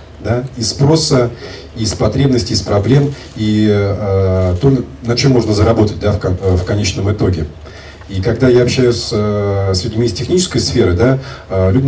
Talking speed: 160 wpm